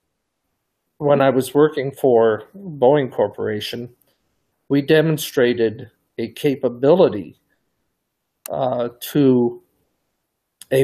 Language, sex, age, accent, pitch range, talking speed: English, male, 50-69, American, 115-140 Hz, 80 wpm